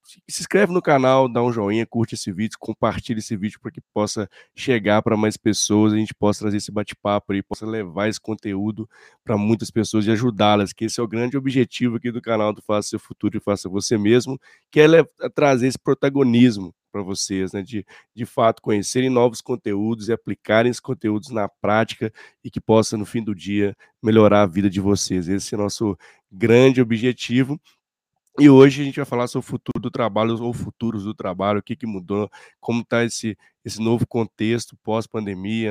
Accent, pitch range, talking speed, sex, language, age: Brazilian, 105-125 Hz, 200 wpm, male, Portuguese, 20-39